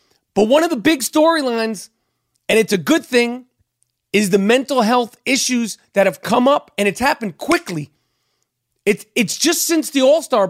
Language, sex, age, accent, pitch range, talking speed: English, male, 40-59, American, 195-255 Hz, 170 wpm